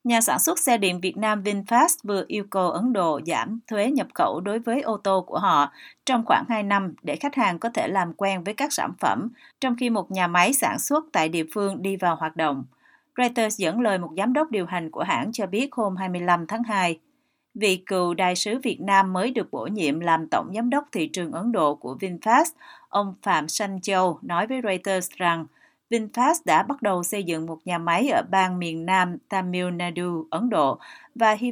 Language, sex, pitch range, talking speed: Vietnamese, female, 180-245 Hz, 220 wpm